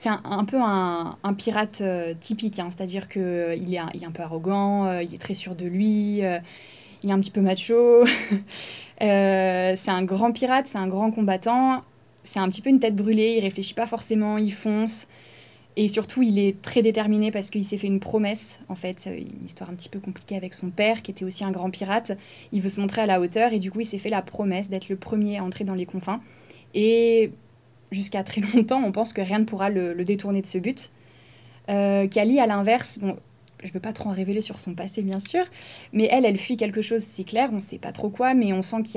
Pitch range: 190-220 Hz